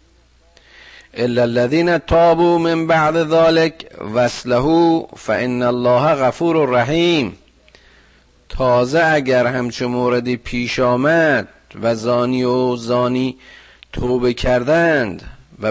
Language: Persian